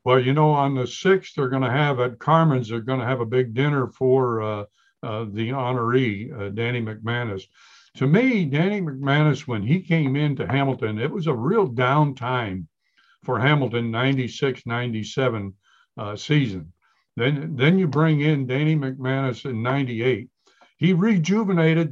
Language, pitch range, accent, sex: English, 125-160 Hz, American, male